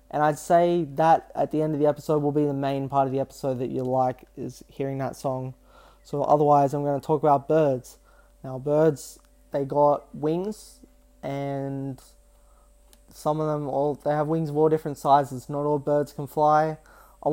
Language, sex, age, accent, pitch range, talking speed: English, male, 20-39, Australian, 135-150 Hz, 195 wpm